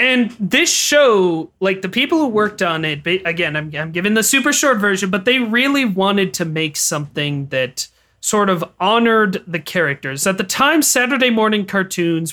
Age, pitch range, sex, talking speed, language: 30-49, 160-205 Hz, male, 180 wpm, English